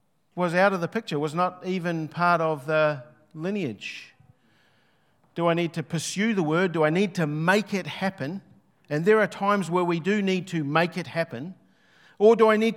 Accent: Australian